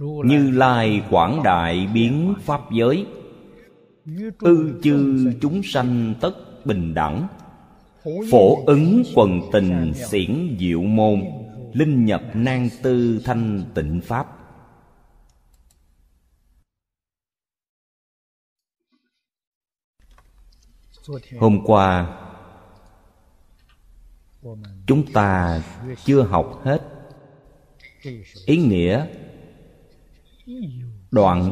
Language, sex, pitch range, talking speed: Vietnamese, male, 85-135 Hz, 70 wpm